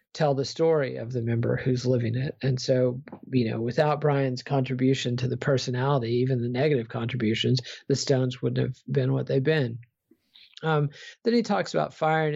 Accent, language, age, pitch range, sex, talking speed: American, English, 40-59, 125-155 Hz, male, 180 wpm